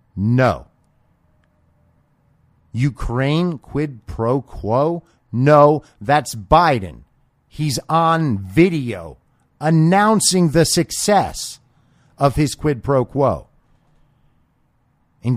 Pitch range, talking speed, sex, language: 90-135 Hz, 80 wpm, male, English